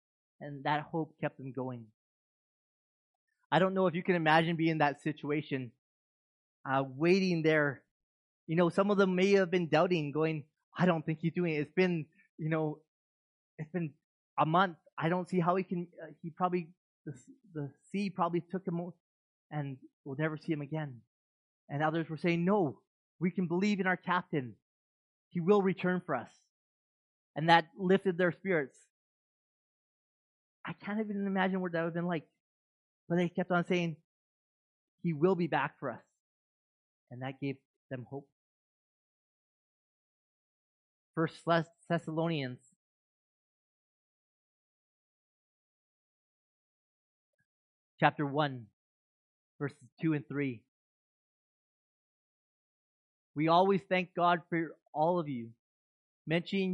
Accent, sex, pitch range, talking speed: American, male, 140-180 Hz, 135 wpm